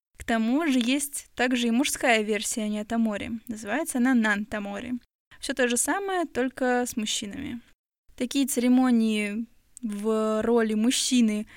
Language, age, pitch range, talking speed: Russian, 20-39, 225-255 Hz, 125 wpm